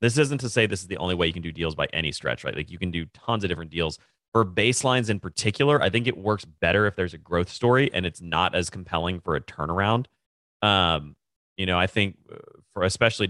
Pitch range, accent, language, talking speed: 85-110 Hz, American, English, 245 wpm